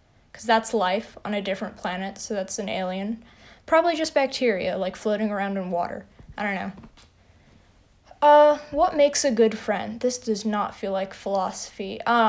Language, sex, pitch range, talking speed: English, female, 205-255 Hz, 170 wpm